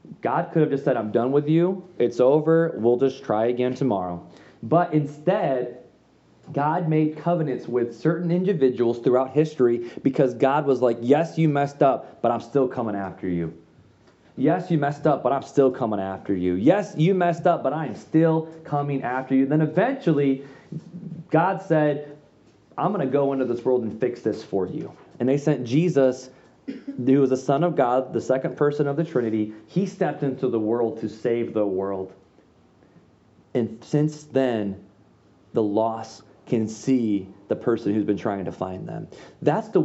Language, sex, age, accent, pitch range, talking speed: English, male, 20-39, American, 120-165 Hz, 180 wpm